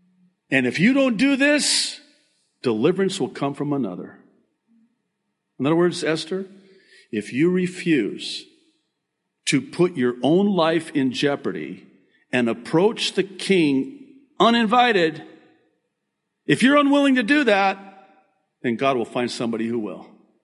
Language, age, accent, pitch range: English, 50-69, American, 125-200 Hz